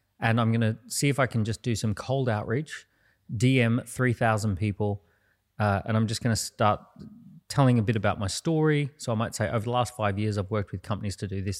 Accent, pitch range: Australian, 100-120 Hz